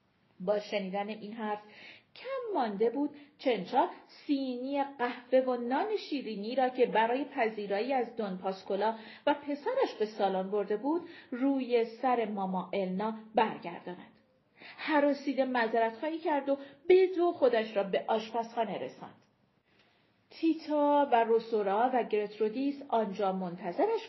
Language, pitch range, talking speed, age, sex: Persian, 220-305 Hz, 120 wpm, 40-59, female